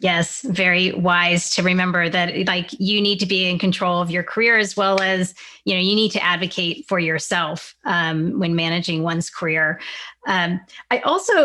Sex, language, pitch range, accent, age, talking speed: female, English, 180-220 Hz, American, 30-49, 185 wpm